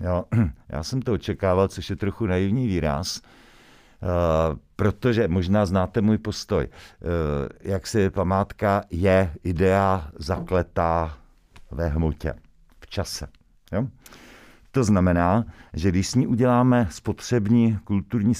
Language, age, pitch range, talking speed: Czech, 50-69, 85-105 Hz, 110 wpm